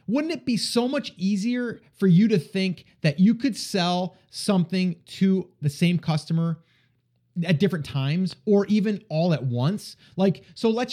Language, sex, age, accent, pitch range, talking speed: English, male, 30-49, American, 150-195 Hz, 165 wpm